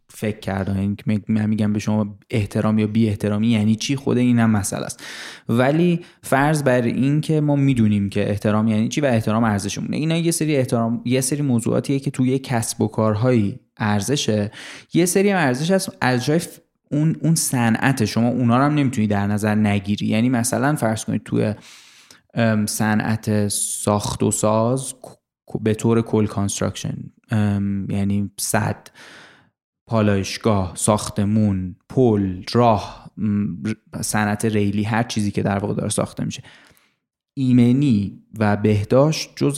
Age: 20-39